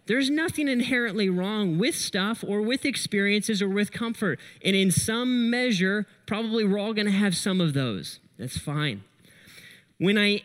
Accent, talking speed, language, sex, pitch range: American, 165 wpm, English, male, 160-210 Hz